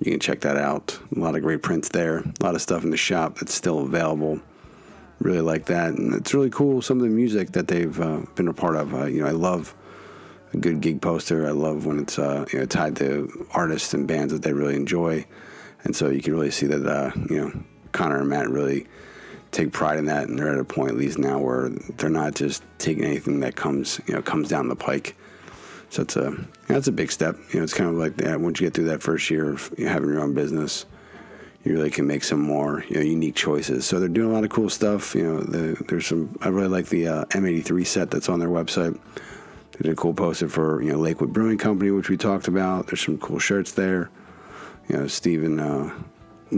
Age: 30-49